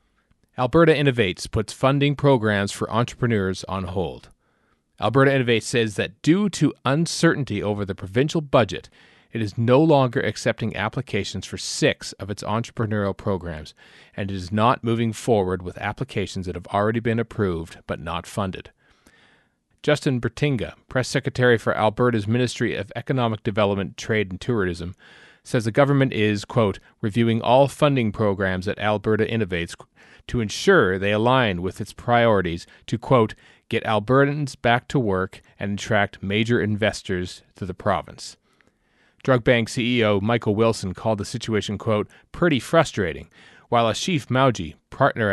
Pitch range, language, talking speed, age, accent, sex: 100-125 Hz, English, 145 wpm, 40-59, American, male